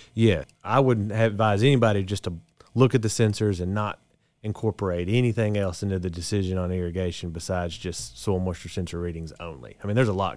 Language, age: English, 30-49